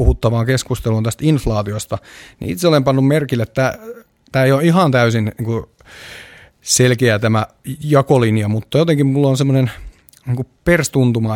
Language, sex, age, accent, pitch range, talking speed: Finnish, male, 30-49, native, 115-135 Hz, 125 wpm